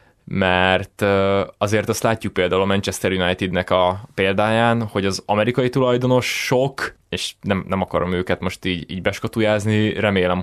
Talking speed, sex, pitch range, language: 145 wpm, male, 95-115 Hz, Hungarian